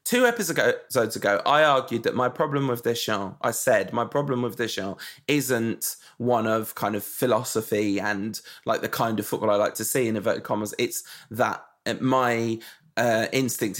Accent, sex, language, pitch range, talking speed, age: British, male, English, 110-135 Hz, 175 wpm, 20-39